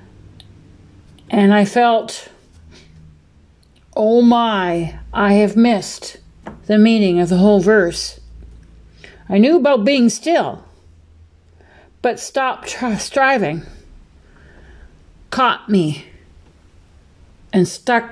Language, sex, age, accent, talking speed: English, female, 60-79, American, 85 wpm